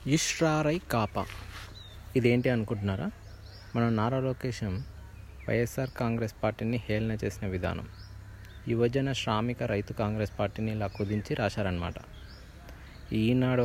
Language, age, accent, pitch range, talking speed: Telugu, 20-39, native, 100-120 Hz, 90 wpm